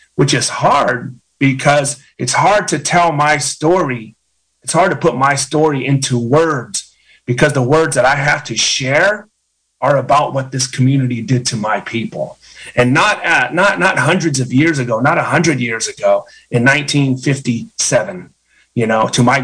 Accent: American